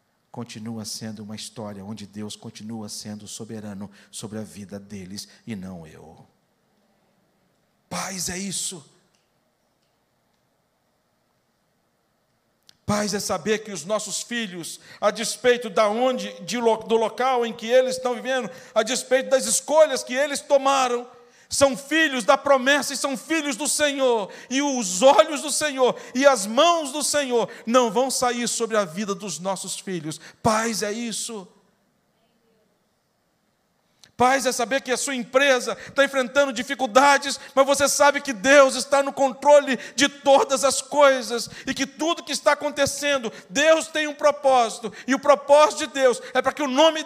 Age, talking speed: 50-69, 150 wpm